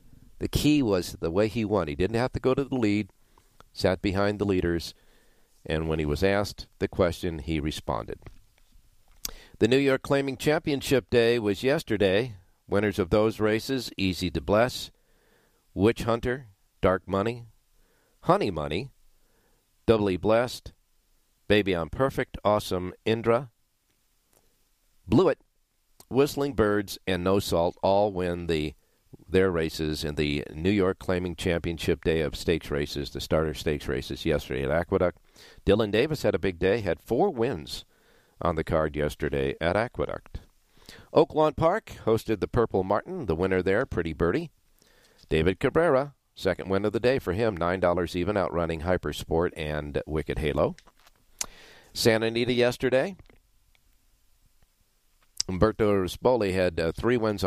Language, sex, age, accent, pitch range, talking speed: English, male, 50-69, American, 85-115 Hz, 145 wpm